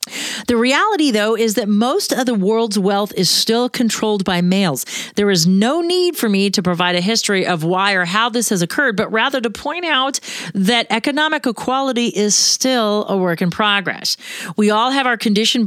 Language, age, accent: English, 40-59, American